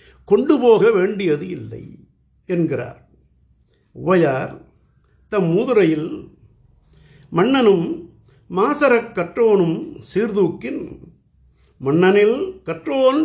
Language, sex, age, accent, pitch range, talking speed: Tamil, male, 60-79, native, 145-230 Hz, 60 wpm